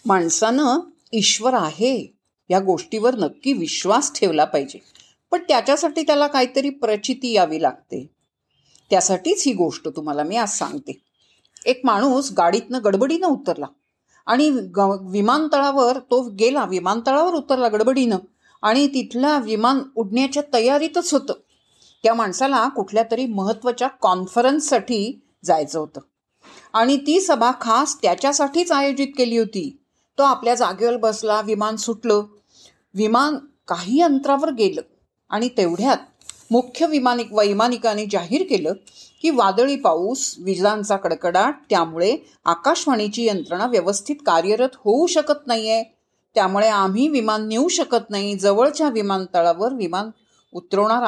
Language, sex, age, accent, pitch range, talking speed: Marathi, female, 50-69, native, 205-275 Hz, 115 wpm